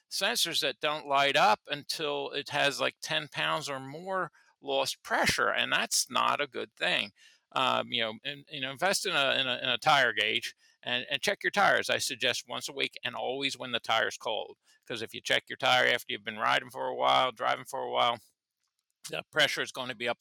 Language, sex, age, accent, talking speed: English, male, 50-69, American, 225 wpm